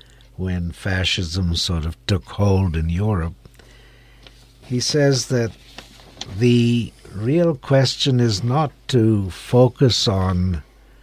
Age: 60-79